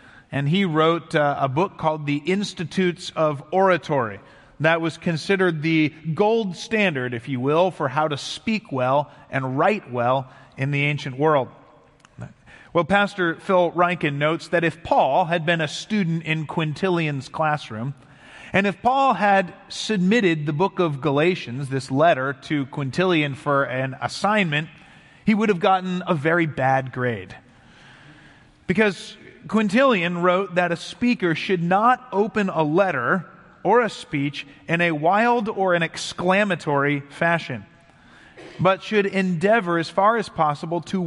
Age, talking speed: 30-49, 145 wpm